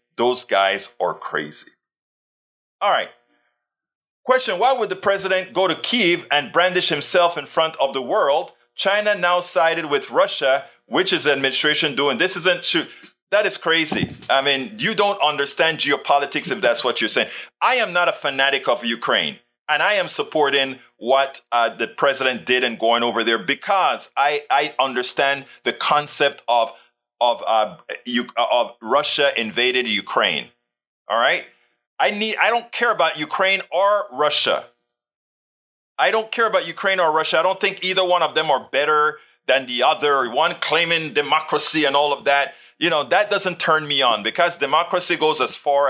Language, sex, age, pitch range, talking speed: English, male, 40-59, 130-180 Hz, 170 wpm